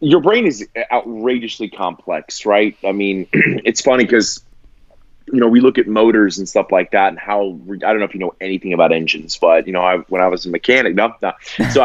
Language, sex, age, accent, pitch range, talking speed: English, male, 30-49, American, 110-140 Hz, 225 wpm